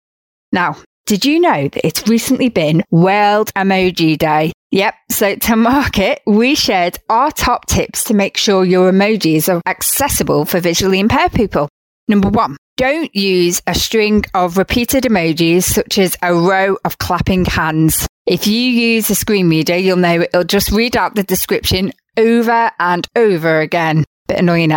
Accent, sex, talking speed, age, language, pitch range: British, female, 165 wpm, 30-49, English, 170-225 Hz